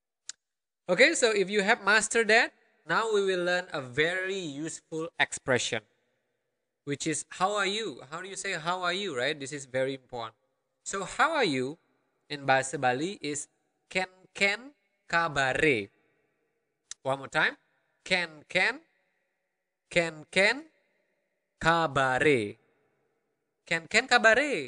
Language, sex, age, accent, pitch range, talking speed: English, male, 20-39, Indonesian, 145-220 Hz, 130 wpm